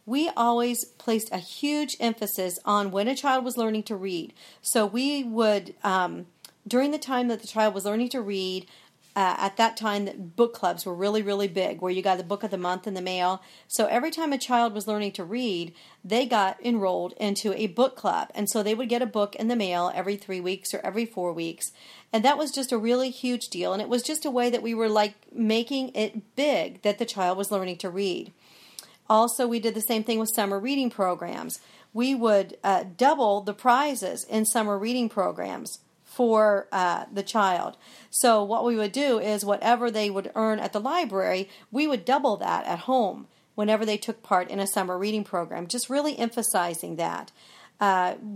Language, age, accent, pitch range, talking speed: English, 40-59, American, 195-240 Hz, 205 wpm